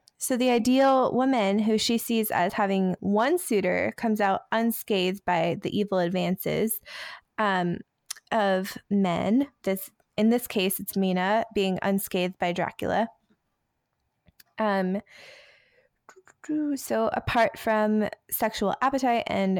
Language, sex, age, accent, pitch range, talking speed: English, female, 20-39, American, 185-225 Hz, 115 wpm